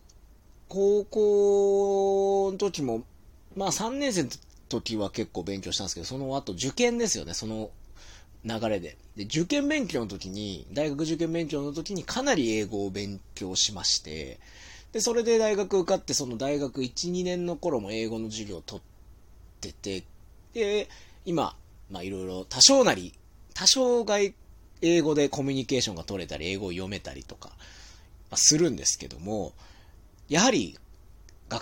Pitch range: 95-145 Hz